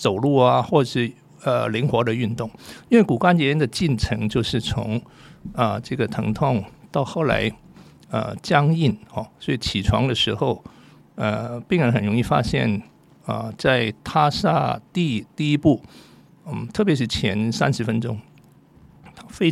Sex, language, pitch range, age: male, Chinese, 110-145 Hz, 50-69